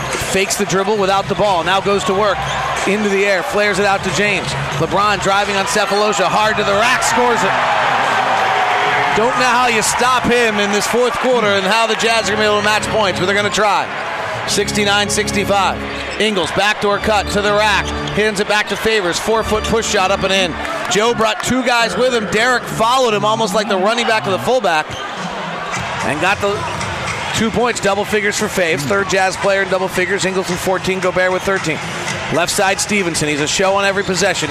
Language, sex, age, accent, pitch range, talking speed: English, male, 40-59, American, 190-210 Hz, 205 wpm